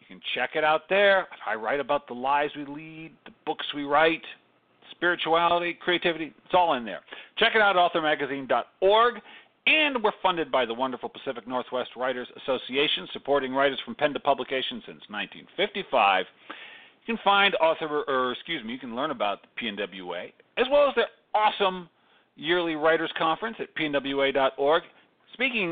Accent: American